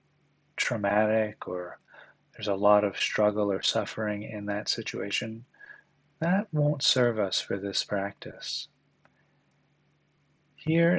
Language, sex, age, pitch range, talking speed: English, male, 30-49, 105-150 Hz, 110 wpm